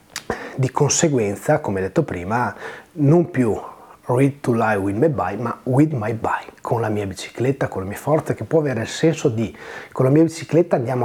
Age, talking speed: 30-49, 195 wpm